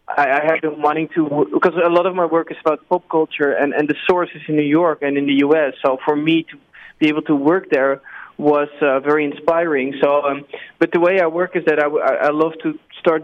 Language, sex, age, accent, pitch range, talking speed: English, male, 20-39, Dutch, 145-165 Hz, 245 wpm